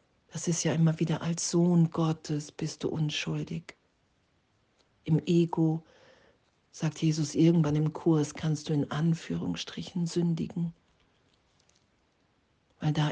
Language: German